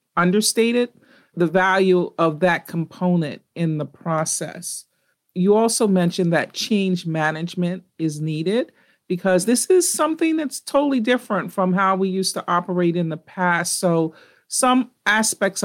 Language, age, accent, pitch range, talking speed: English, 40-59, American, 165-205 Hz, 140 wpm